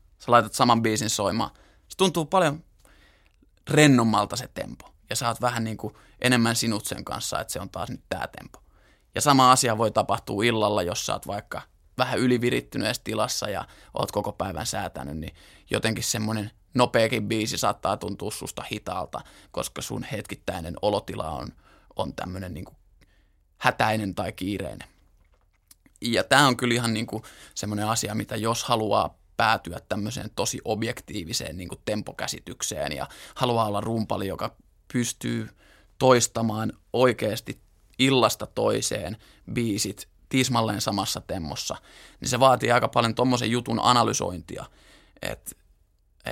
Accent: native